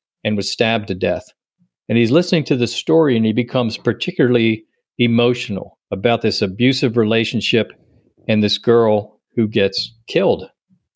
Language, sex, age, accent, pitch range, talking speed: English, male, 50-69, American, 105-125 Hz, 140 wpm